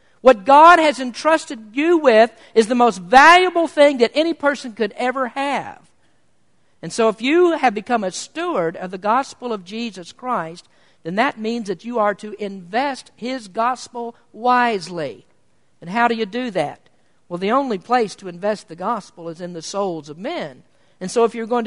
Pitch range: 180-250 Hz